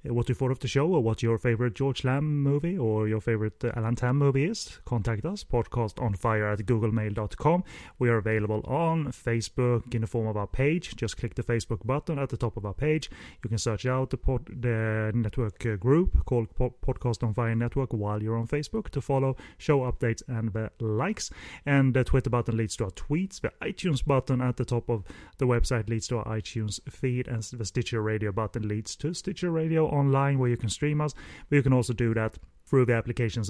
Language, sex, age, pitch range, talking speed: English, male, 30-49, 110-135 Hz, 220 wpm